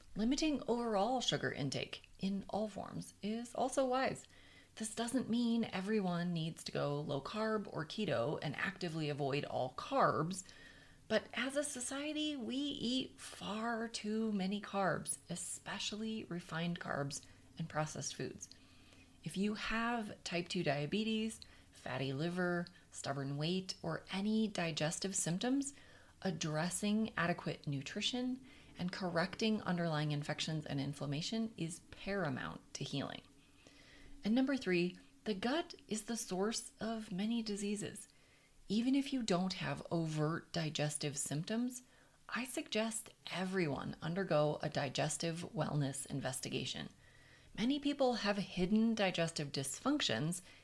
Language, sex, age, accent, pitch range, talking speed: English, female, 30-49, American, 155-225 Hz, 120 wpm